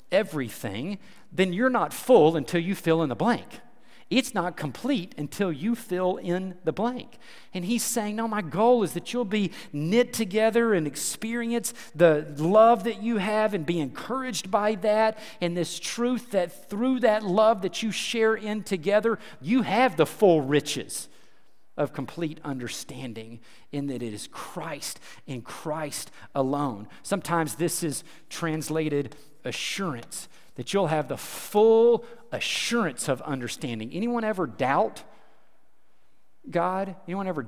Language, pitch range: English, 155-220 Hz